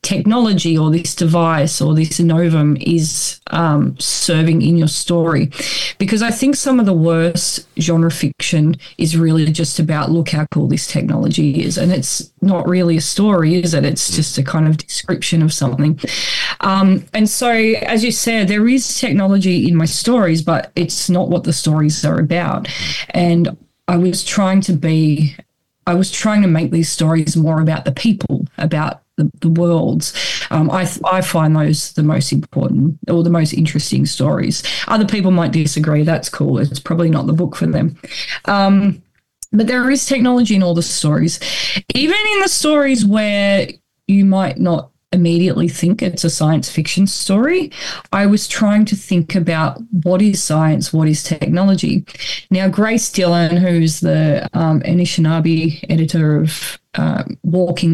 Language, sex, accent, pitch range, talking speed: English, female, Australian, 155-195 Hz, 170 wpm